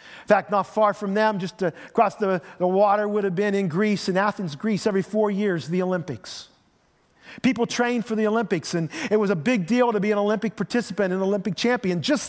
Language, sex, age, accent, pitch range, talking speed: English, male, 40-59, American, 170-225 Hz, 210 wpm